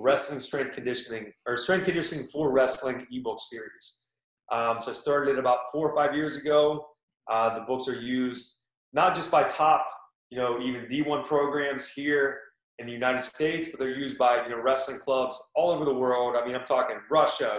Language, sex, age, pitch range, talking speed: English, male, 30-49, 125-145 Hz, 195 wpm